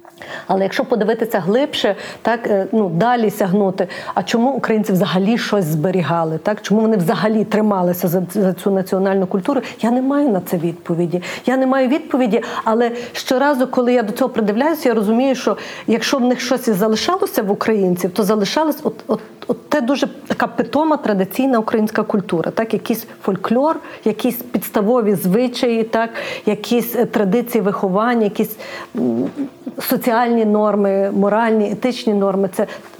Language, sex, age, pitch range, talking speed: Ukrainian, female, 40-59, 200-250 Hz, 145 wpm